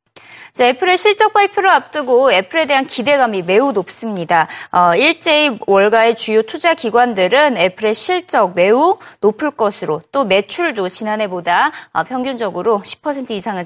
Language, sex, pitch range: Korean, female, 210-305 Hz